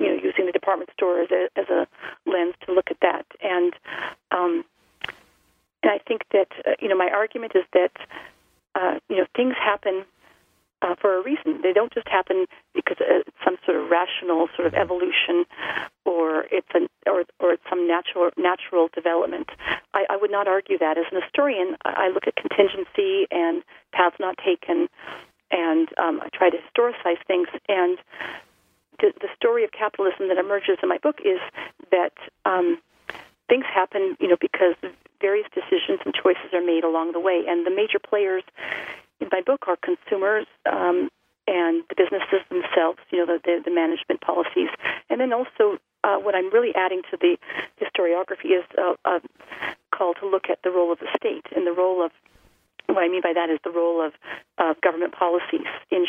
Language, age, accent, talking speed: English, 40-59, American, 185 wpm